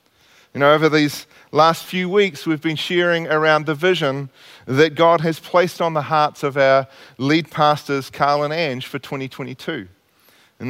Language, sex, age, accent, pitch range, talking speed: English, male, 40-59, Australian, 145-190 Hz, 170 wpm